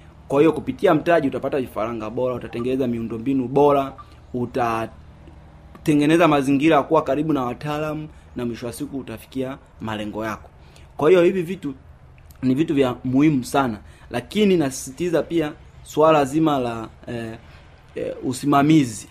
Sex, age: male, 30-49